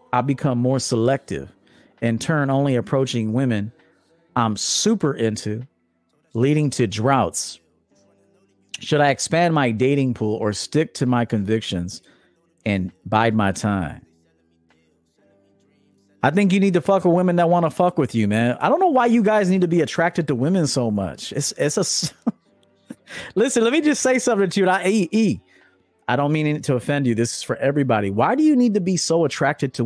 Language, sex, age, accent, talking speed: English, male, 40-59, American, 185 wpm